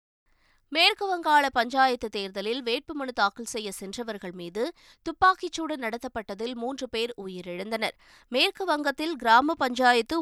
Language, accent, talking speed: Tamil, native, 100 wpm